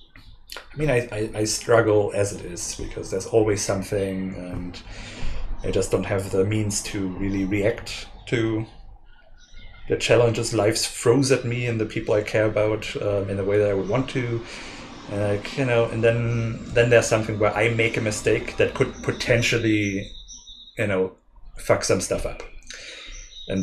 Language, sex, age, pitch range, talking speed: English, male, 30-49, 95-115 Hz, 175 wpm